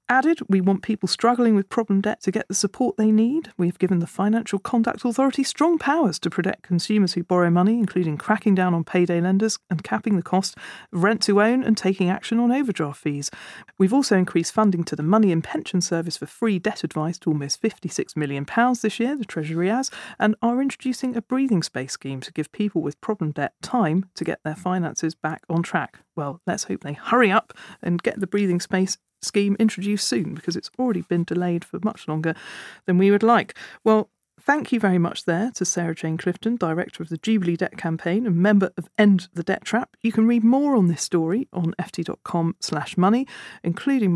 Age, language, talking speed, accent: 40-59, English, 205 wpm, British